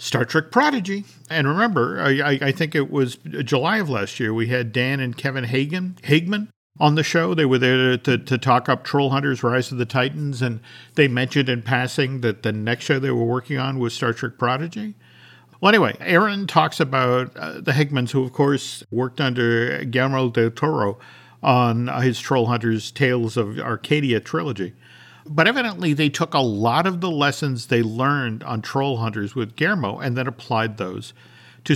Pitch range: 120-155 Hz